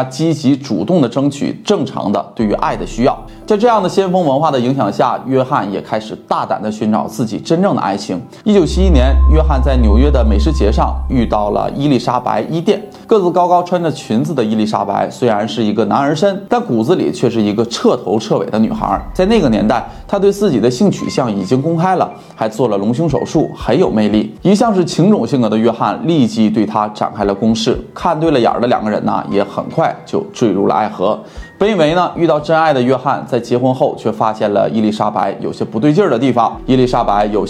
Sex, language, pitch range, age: male, Chinese, 110-180 Hz, 20-39